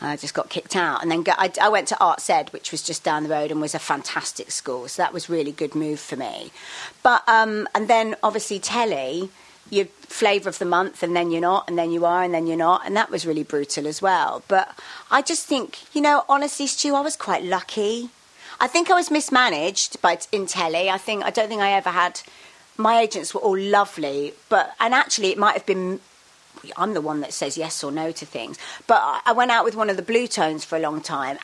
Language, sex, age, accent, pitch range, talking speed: English, female, 40-59, British, 170-215 Hz, 245 wpm